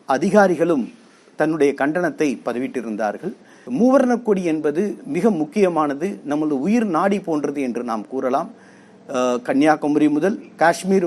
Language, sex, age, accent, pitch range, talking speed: Tamil, male, 50-69, native, 145-190 Hz, 90 wpm